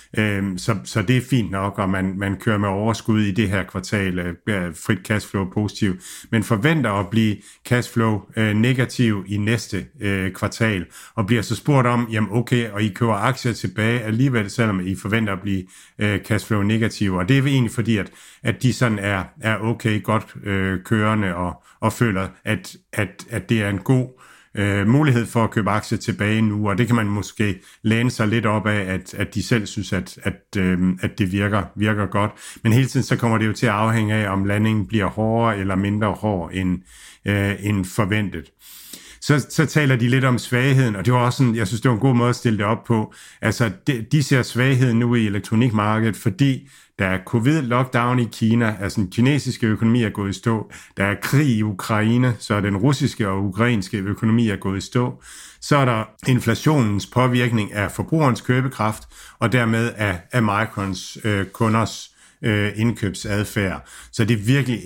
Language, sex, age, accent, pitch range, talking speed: Danish, male, 60-79, native, 100-120 Hz, 190 wpm